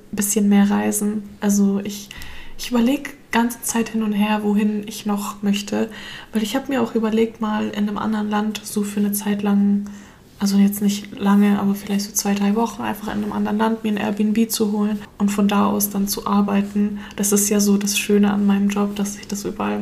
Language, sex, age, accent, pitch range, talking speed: German, female, 20-39, German, 205-215 Hz, 220 wpm